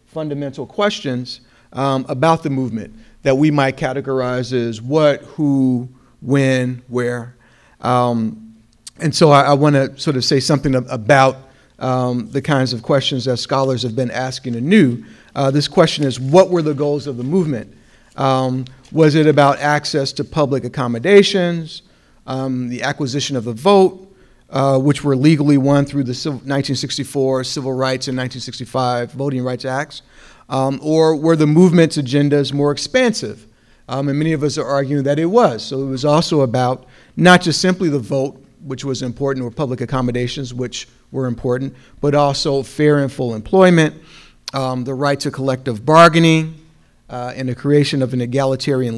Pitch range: 125-150 Hz